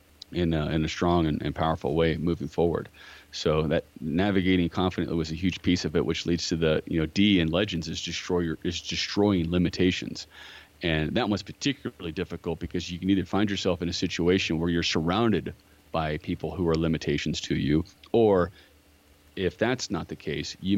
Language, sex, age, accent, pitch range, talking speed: English, male, 40-59, American, 80-90 Hz, 195 wpm